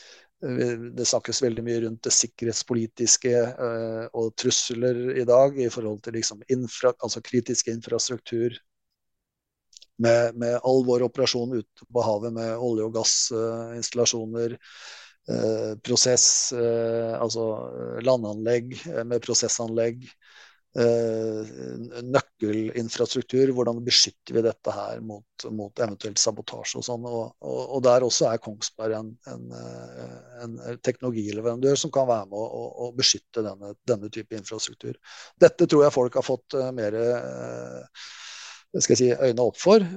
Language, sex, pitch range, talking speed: English, male, 110-125 Hz, 125 wpm